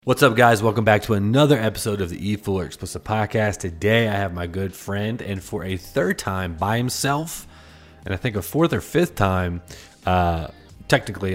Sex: male